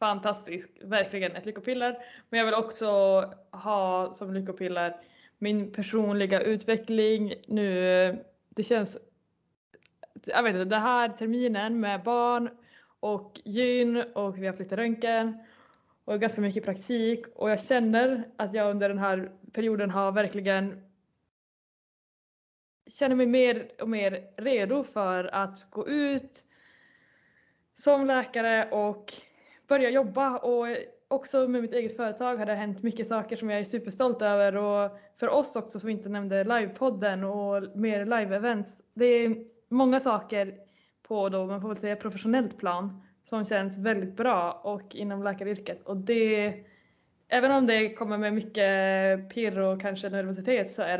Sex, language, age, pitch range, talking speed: female, Swedish, 20-39, 195-235 Hz, 140 wpm